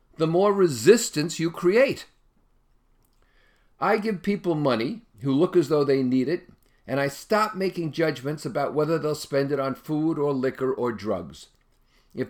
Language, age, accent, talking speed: English, 50-69, American, 160 wpm